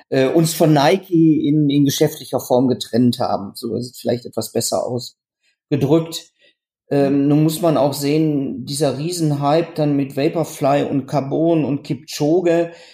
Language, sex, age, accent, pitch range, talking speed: German, male, 40-59, German, 125-150 Hz, 145 wpm